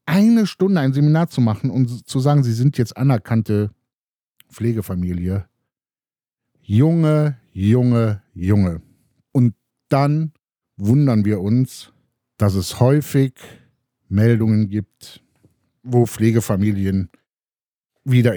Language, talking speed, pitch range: German, 100 wpm, 110-150 Hz